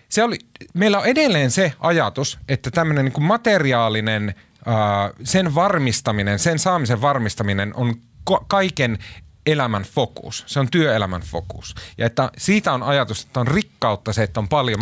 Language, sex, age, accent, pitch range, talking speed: Finnish, male, 30-49, native, 105-140 Hz, 135 wpm